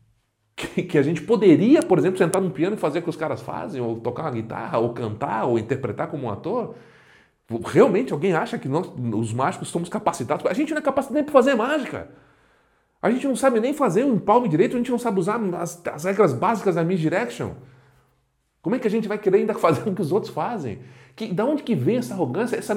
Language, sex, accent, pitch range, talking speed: Portuguese, male, Brazilian, 125-190 Hz, 230 wpm